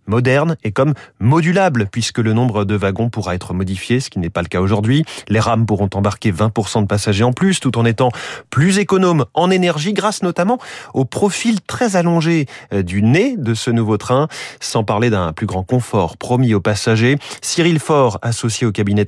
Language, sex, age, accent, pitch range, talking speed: French, male, 30-49, French, 120-160 Hz, 190 wpm